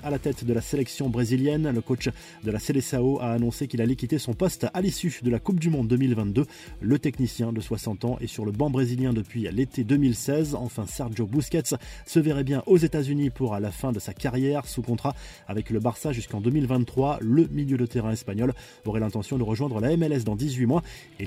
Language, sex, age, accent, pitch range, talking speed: French, male, 20-39, French, 115-145 Hz, 215 wpm